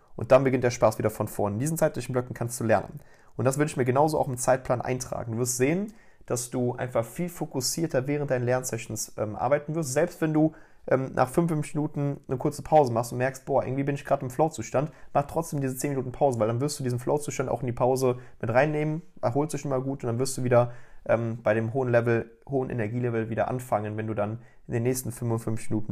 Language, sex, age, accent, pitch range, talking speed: German, male, 30-49, German, 110-135 Hz, 240 wpm